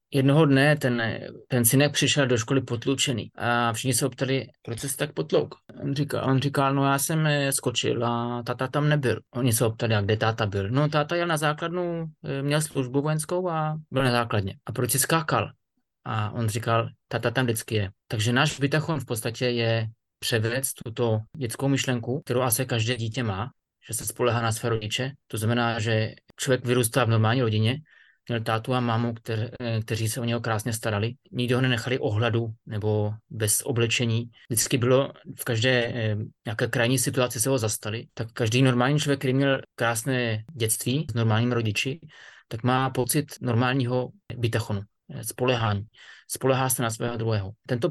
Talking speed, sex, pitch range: 175 wpm, male, 115-135 Hz